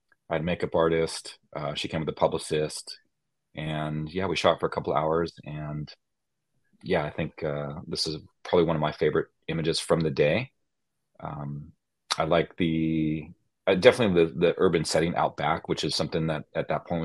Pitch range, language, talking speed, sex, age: 75-85 Hz, English, 185 wpm, male, 30-49